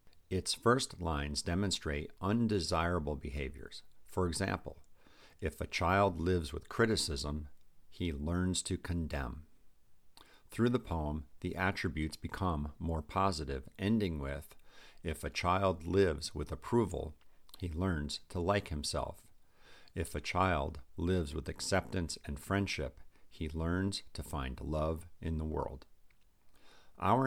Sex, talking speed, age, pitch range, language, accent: male, 125 wpm, 50-69, 75-95 Hz, English, American